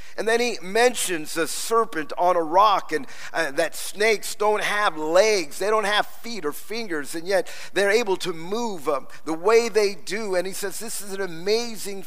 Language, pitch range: English, 185-240 Hz